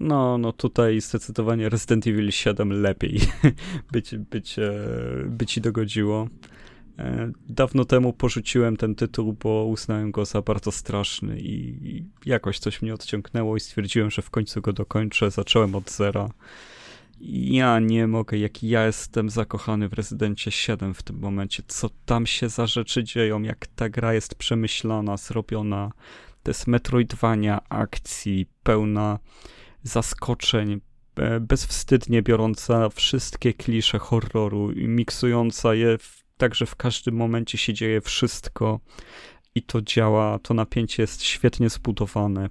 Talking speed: 135 wpm